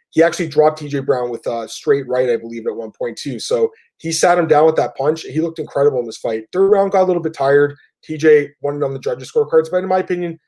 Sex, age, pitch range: male, 20-39, 130-170 Hz